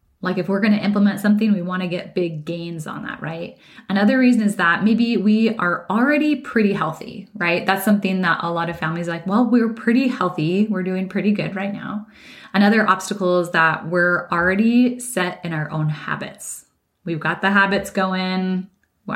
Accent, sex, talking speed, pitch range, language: American, female, 190 wpm, 165-205 Hz, English